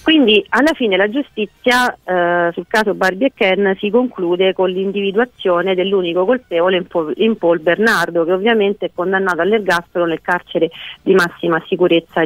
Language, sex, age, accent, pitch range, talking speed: Italian, female, 40-59, native, 175-210 Hz, 145 wpm